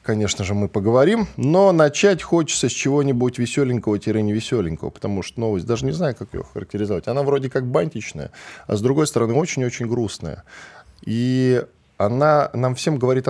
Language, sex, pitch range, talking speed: Russian, male, 105-145 Hz, 160 wpm